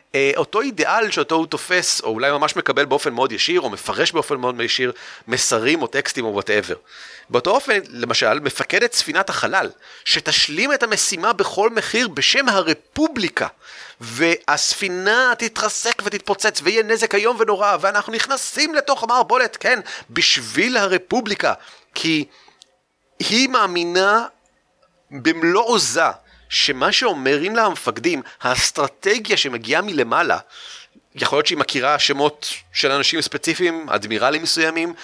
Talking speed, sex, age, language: 120 wpm, male, 30-49, Hebrew